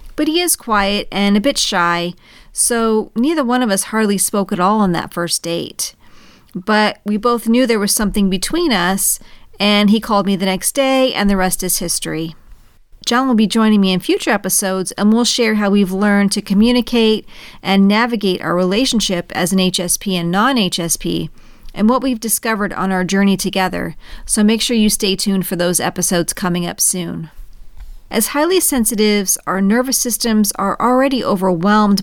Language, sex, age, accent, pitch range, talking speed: English, female, 40-59, American, 185-235 Hz, 180 wpm